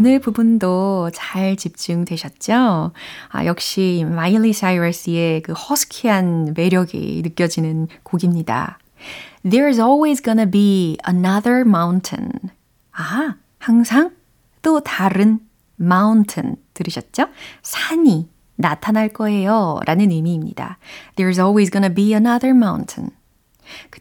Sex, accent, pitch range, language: female, native, 175-240 Hz, Korean